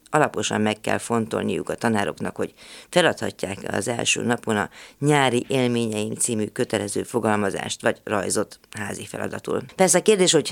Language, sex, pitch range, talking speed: Hungarian, female, 105-130 Hz, 145 wpm